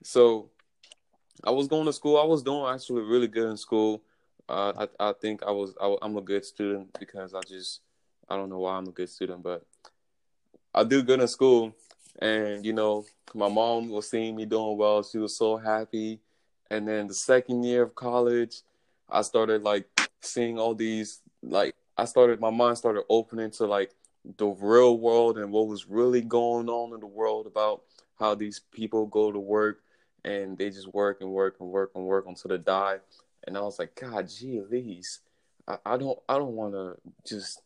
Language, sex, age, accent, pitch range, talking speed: English, male, 20-39, American, 100-115 Hz, 190 wpm